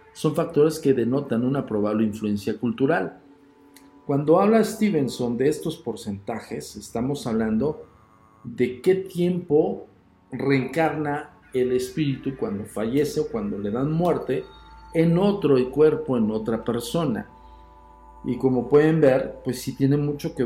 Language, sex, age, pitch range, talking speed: Spanish, male, 50-69, 110-150 Hz, 130 wpm